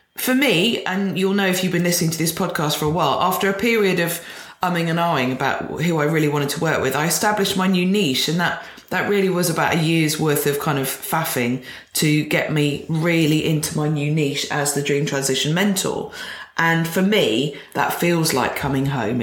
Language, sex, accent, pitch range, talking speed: English, female, British, 140-170 Hz, 215 wpm